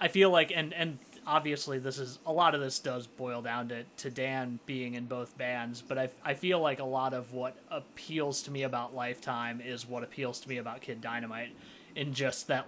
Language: English